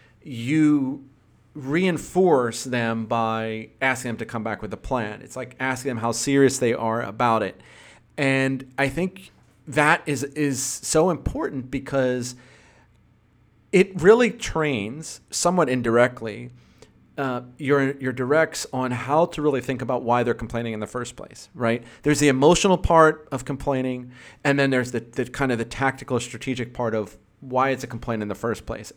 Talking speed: 165 wpm